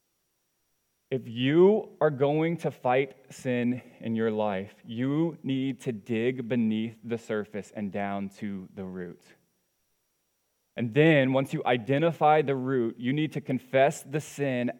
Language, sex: English, male